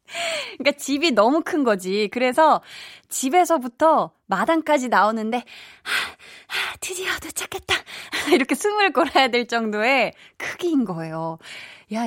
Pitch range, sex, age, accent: 195-285 Hz, female, 20-39, native